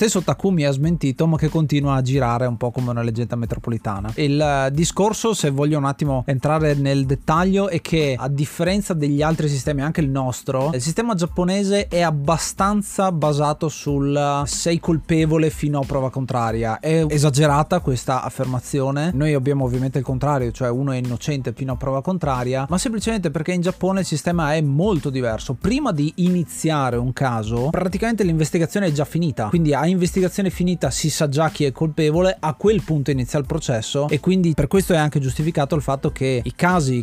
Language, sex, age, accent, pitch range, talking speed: Italian, male, 30-49, native, 135-170 Hz, 185 wpm